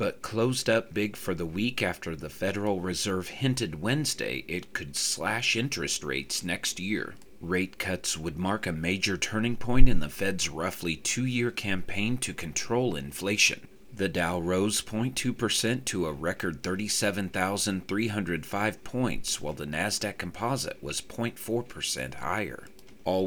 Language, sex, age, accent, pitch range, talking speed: English, male, 40-59, American, 90-115 Hz, 140 wpm